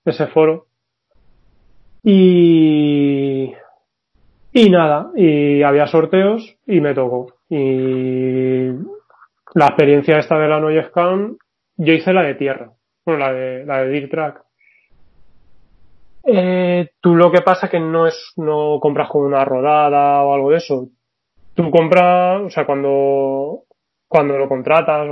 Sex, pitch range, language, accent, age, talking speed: male, 130-165 Hz, Spanish, Spanish, 20-39, 130 wpm